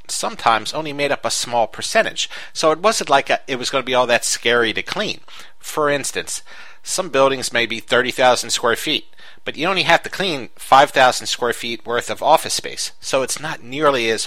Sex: male